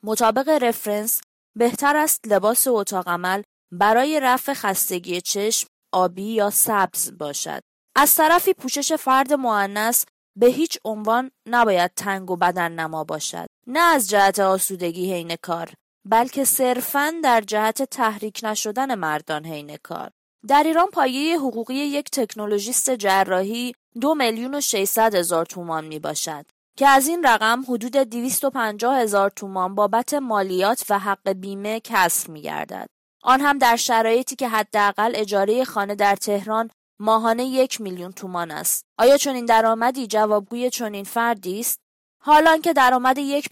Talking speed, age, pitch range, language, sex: 135 wpm, 20-39, 200-255 Hz, Persian, female